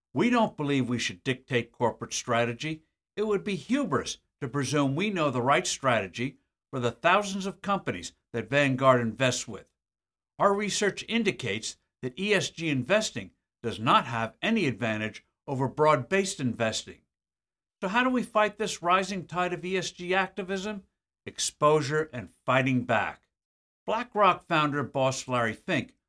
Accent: American